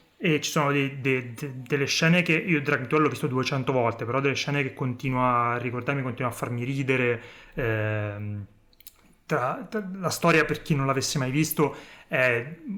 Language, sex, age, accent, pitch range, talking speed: Italian, male, 30-49, native, 115-150 Hz, 190 wpm